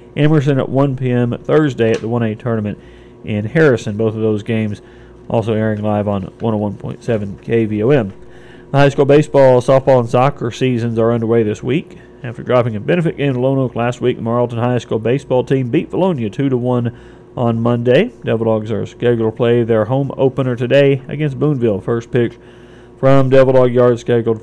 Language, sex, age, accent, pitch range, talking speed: English, male, 40-59, American, 115-130 Hz, 175 wpm